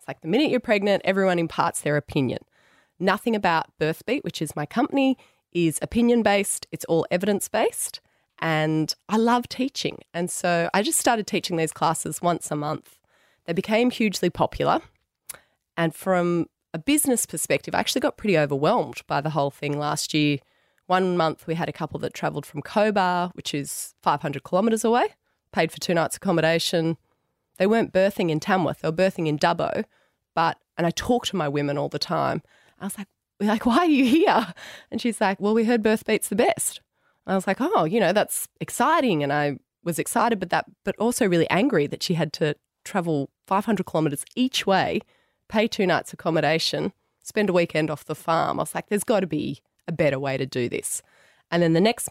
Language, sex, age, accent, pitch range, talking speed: English, female, 20-39, Australian, 155-210 Hz, 195 wpm